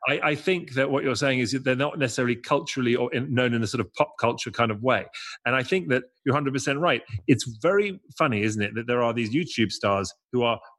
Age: 30-49